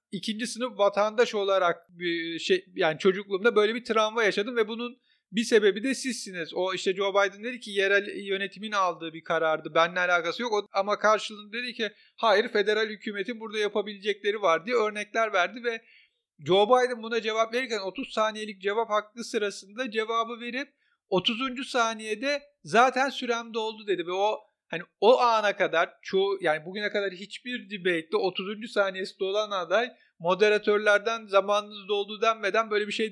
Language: Turkish